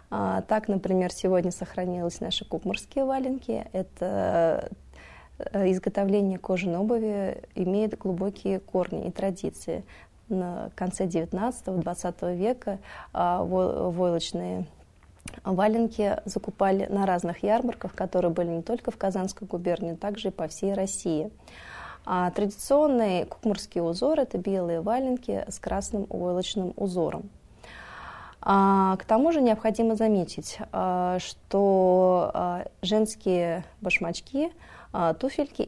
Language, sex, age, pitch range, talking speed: Russian, female, 20-39, 180-215 Hz, 105 wpm